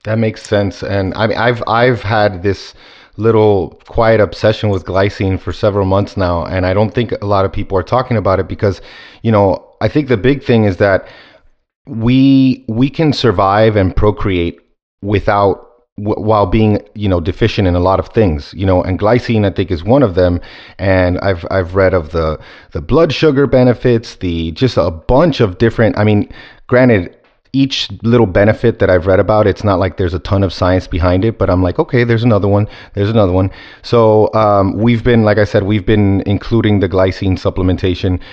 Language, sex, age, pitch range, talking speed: English, male, 30-49, 95-115 Hz, 205 wpm